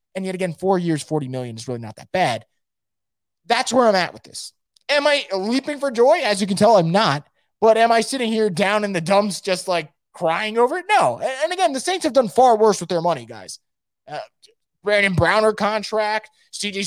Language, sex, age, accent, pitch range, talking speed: English, male, 20-39, American, 175-230 Hz, 215 wpm